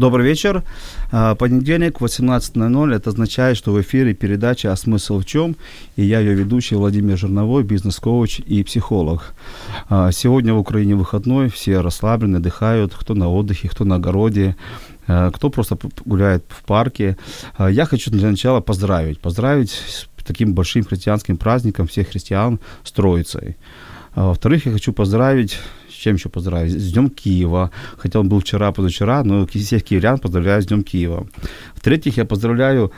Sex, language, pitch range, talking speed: male, Ukrainian, 95-120 Hz, 145 wpm